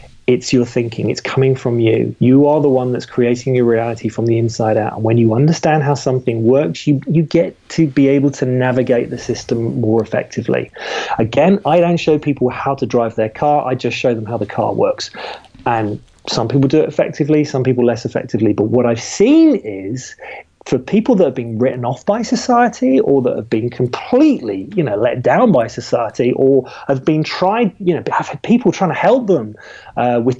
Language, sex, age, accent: English, male, 30-49, British